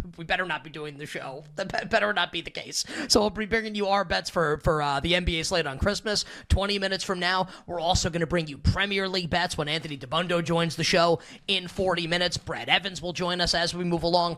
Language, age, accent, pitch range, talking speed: English, 20-39, American, 155-190 Hz, 245 wpm